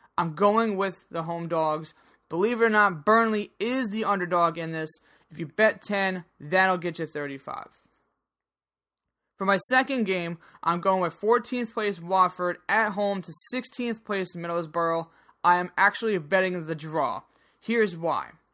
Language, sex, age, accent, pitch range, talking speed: English, male, 20-39, American, 175-235 Hz, 155 wpm